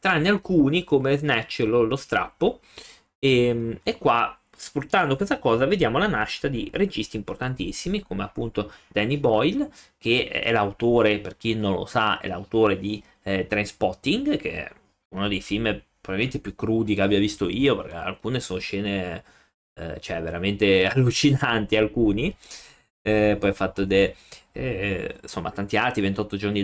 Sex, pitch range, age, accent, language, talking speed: male, 100-130 Hz, 20-39, native, Italian, 150 wpm